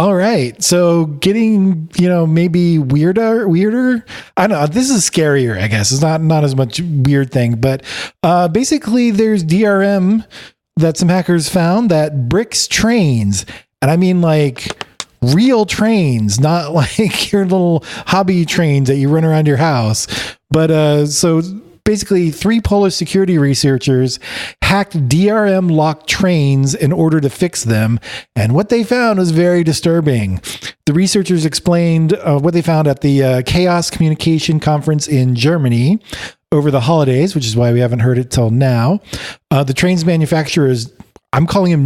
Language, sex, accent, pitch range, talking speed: English, male, American, 135-180 Hz, 160 wpm